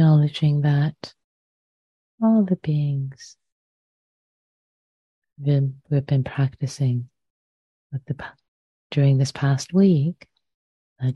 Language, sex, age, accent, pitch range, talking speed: English, female, 30-49, American, 125-155 Hz, 70 wpm